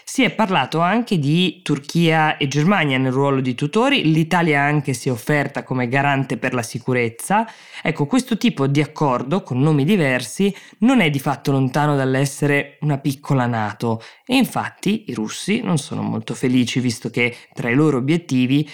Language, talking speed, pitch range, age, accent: Italian, 170 wpm, 120-150 Hz, 20-39, native